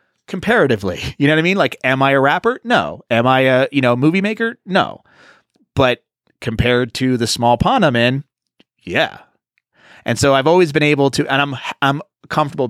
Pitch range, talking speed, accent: 110-145 Hz, 190 wpm, American